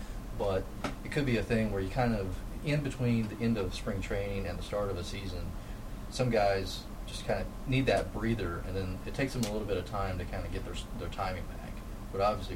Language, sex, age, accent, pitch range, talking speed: English, male, 30-49, American, 95-110 Hz, 245 wpm